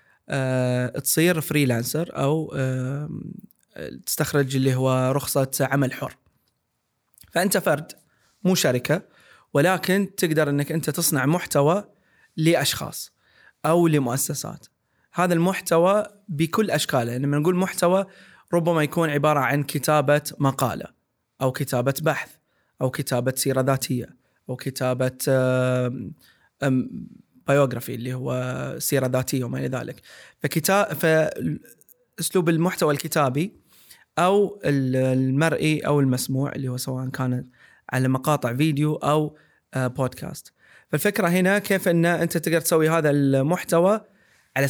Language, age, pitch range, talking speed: Arabic, 20-39, 130-165 Hz, 115 wpm